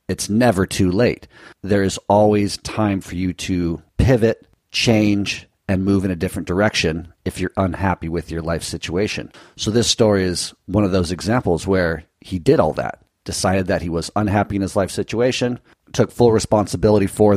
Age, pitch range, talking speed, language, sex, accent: 40-59, 90-110 Hz, 180 wpm, English, male, American